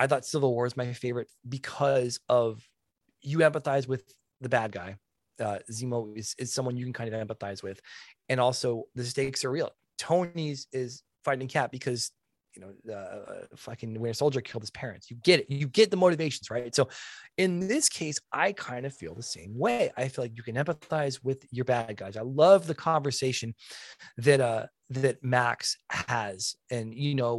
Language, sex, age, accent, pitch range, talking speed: English, male, 30-49, American, 115-145 Hz, 195 wpm